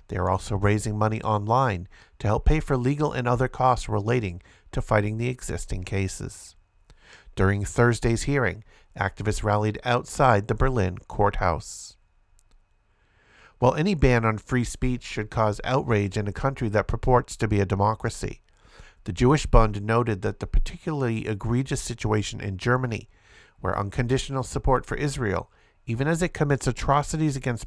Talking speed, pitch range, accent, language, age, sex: 150 wpm, 100-130 Hz, American, English, 50-69, male